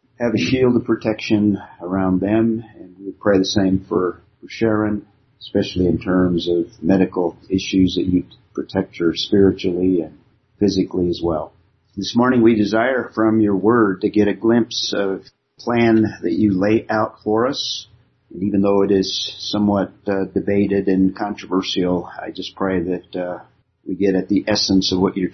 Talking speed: 170 wpm